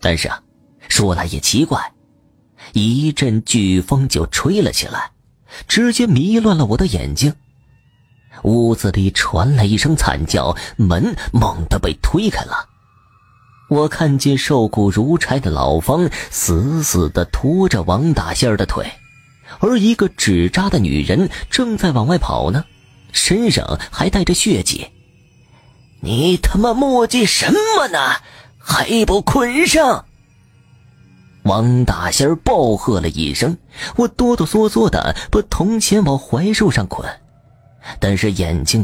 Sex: male